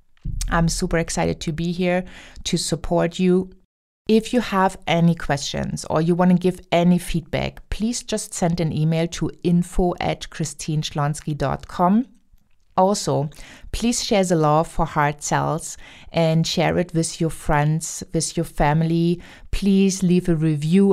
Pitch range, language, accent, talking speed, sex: 150-180 Hz, English, German, 145 wpm, female